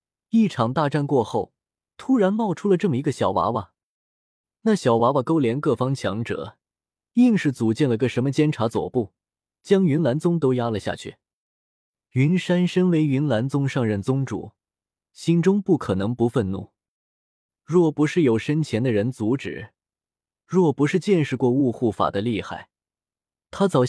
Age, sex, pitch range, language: 20-39, male, 110-155 Hz, Chinese